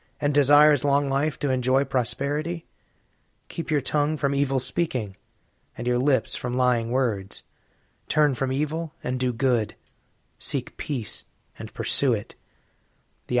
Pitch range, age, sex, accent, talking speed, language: 115-135 Hz, 30-49, male, American, 140 wpm, English